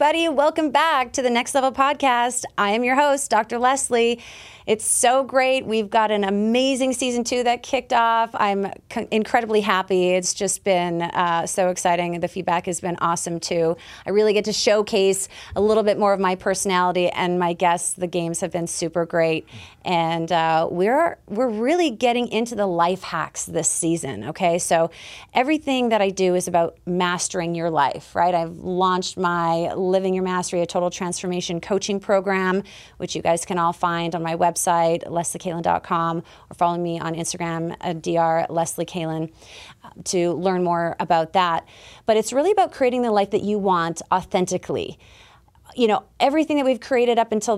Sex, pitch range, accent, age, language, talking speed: female, 175-220 Hz, American, 30-49, English, 175 wpm